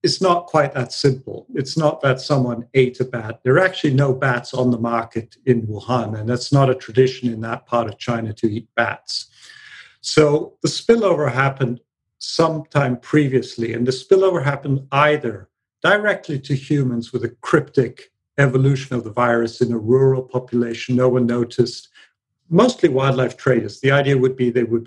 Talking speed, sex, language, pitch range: 175 wpm, male, English, 120-145 Hz